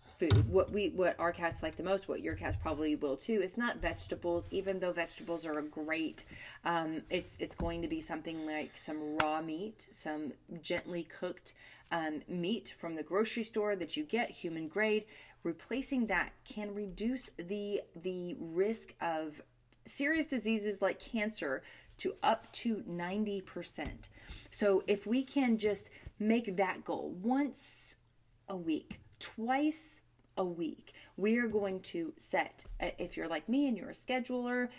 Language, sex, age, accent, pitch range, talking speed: English, female, 30-49, American, 160-210 Hz, 160 wpm